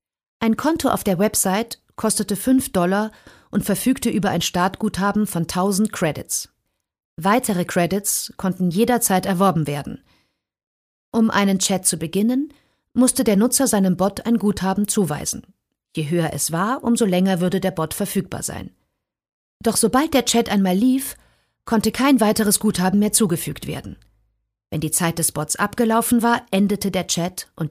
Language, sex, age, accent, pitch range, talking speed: German, female, 50-69, German, 175-215 Hz, 150 wpm